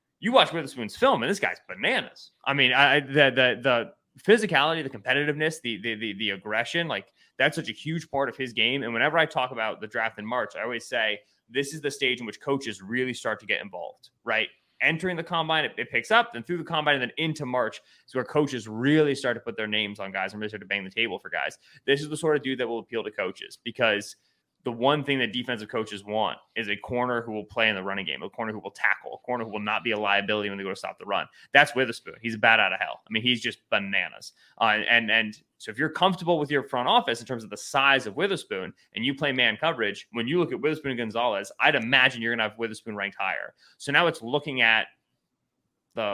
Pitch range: 110-150 Hz